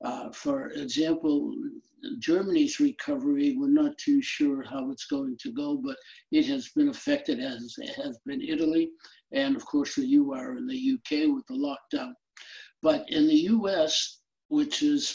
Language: English